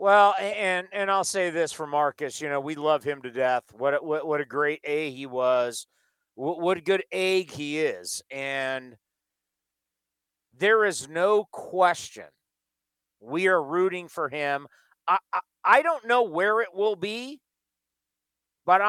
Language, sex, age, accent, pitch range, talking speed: English, male, 50-69, American, 125-180 Hz, 160 wpm